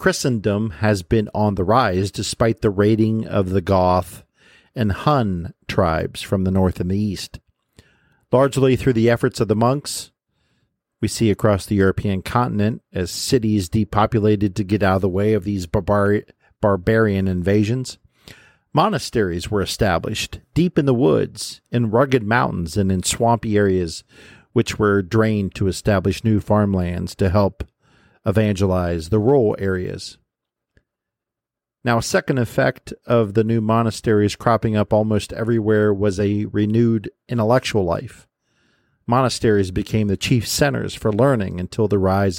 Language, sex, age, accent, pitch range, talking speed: English, male, 50-69, American, 100-115 Hz, 145 wpm